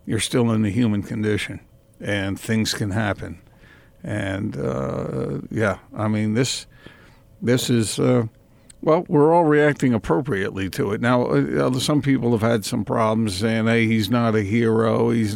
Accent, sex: American, male